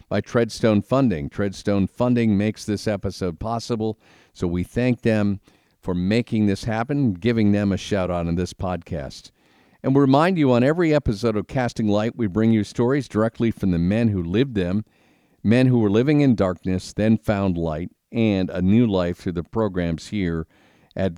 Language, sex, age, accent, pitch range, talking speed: English, male, 50-69, American, 90-115 Hz, 180 wpm